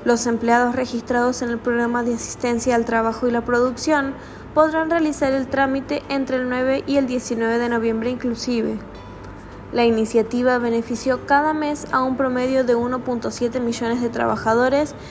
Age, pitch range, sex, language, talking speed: 10-29, 230-270 Hz, female, Spanish, 155 wpm